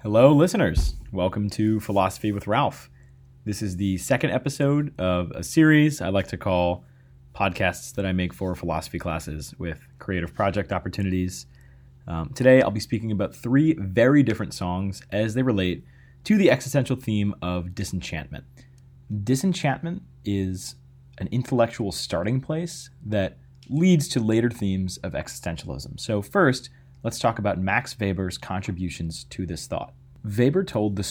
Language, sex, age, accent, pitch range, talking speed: English, male, 30-49, American, 95-130 Hz, 145 wpm